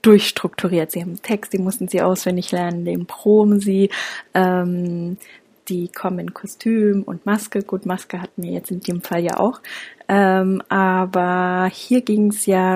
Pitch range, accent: 180-200 Hz, German